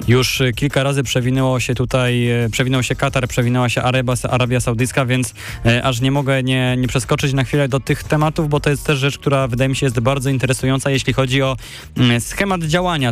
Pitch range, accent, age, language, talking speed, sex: 115-140 Hz, native, 20-39, Polish, 190 wpm, male